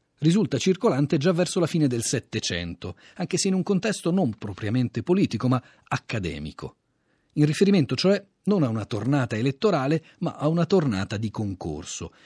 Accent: native